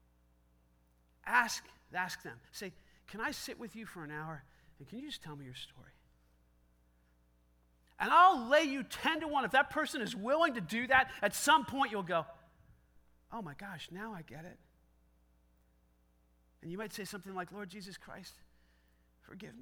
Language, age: English, 40-59